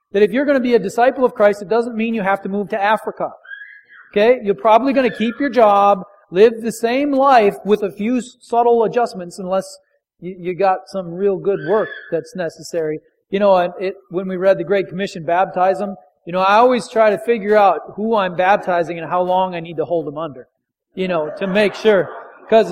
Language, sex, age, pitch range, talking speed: English, male, 40-59, 175-230 Hz, 215 wpm